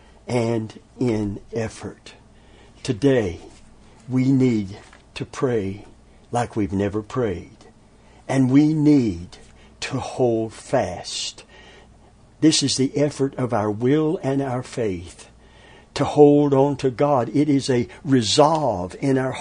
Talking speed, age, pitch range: 120 wpm, 60-79, 105-140 Hz